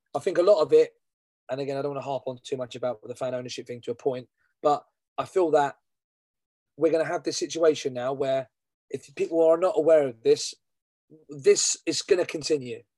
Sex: male